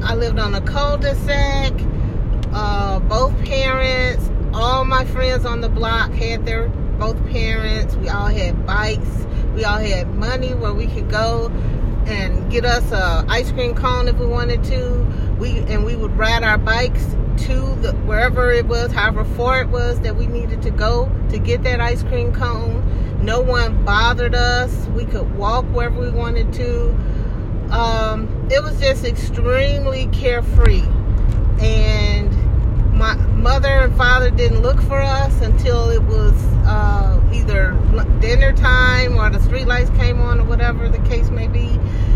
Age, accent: 30-49, American